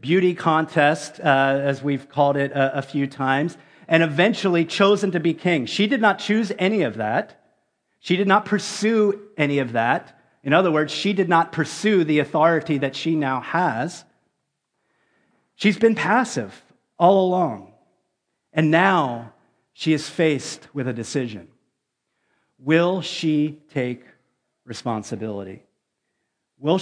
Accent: American